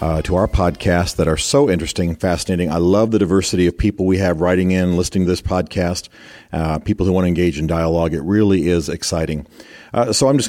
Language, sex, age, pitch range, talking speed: English, male, 40-59, 85-105 Hz, 225 wpm